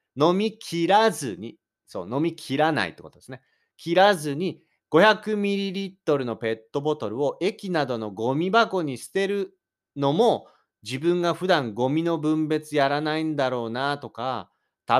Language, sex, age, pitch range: Japanese, male, 30-49, 105-160 Hz